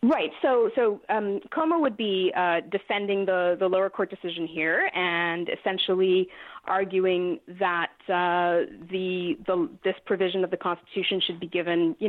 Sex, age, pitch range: female, 30-49, 180-225 Hz